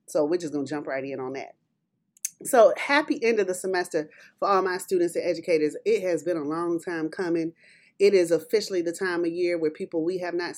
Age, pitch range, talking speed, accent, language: 30-49, 180-245 Hz, 235 wpm, American, English